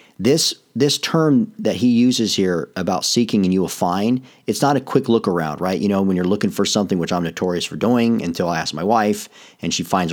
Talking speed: 235 wpm